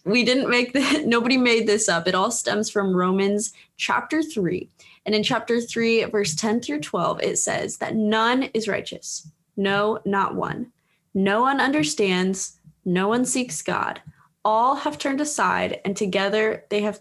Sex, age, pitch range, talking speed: female, 20-39, 185-230 Hz, 165 wpm